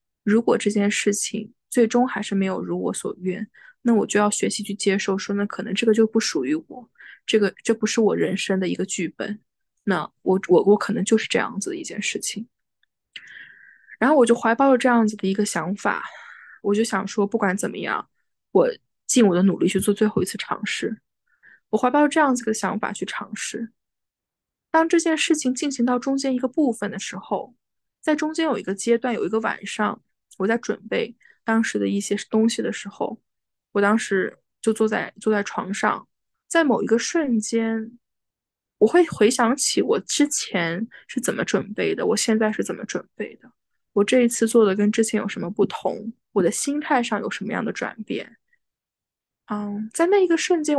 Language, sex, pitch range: Chinese, female, 205-270 Hz